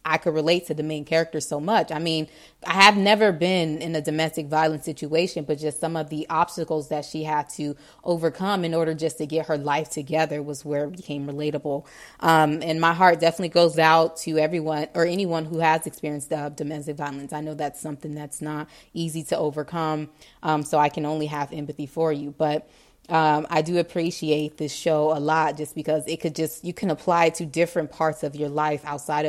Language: English